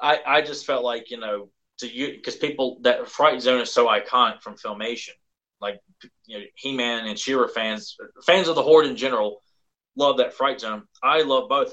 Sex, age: male, 30-49